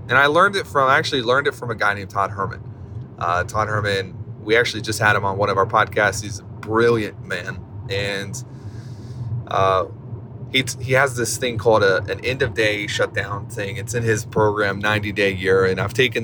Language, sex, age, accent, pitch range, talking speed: English, male, 30-49, American, 105-120 Hz, 215 wpm